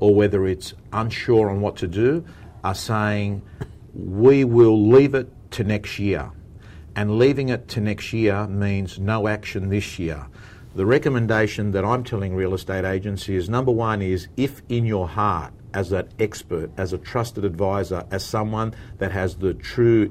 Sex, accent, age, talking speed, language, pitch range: male, Australian, 50-69, 165 wpm, English, 95-110 Hz